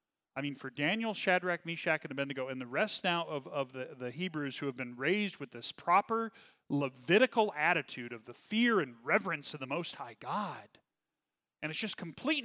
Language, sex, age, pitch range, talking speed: English, male, 40-59, 140-200 Hz, 195 wpm